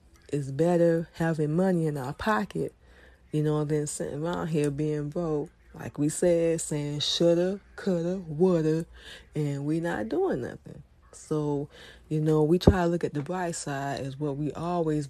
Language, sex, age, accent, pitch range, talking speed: English, female, 20-39, American, 145-175 Hz, 165 wpm